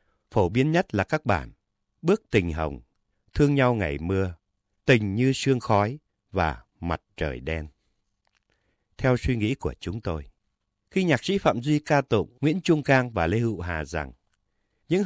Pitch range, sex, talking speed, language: 85-130 Hz, male, 170 wpm, Vietnamese